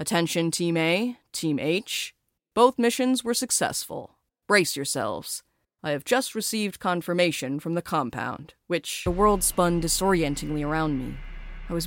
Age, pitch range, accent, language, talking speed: 30-49, 155-195 Hz, American, English, 140 wpm